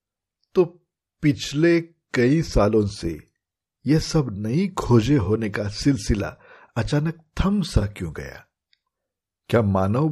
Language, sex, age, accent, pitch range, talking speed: Hindi, male, 60-79, native, 100-135 Hz, 100 wpm